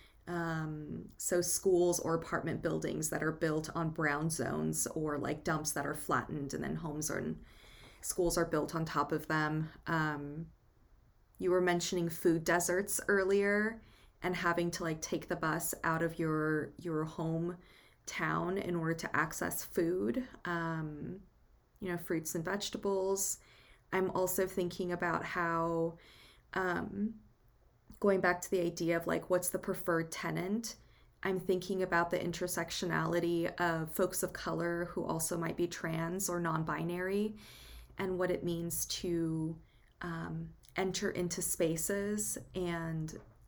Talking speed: 140 wpm